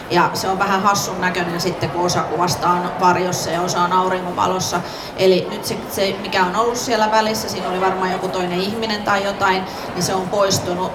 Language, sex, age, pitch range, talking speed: Finnish, female, 30-49, 180-195 Hz, 195 wpm